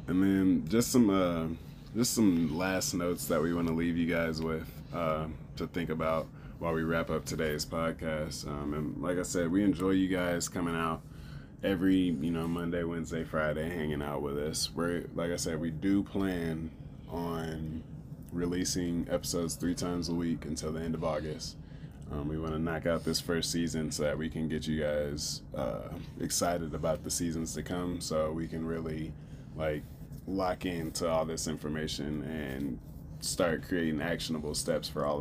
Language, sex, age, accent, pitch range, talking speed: English, male, 20-39, American, 80-90 Hz, 180 wpm